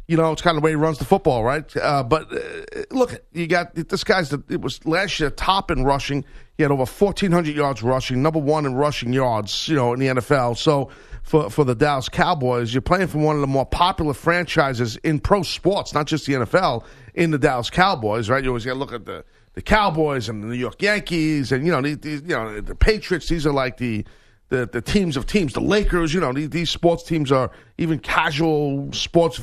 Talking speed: 230 wpm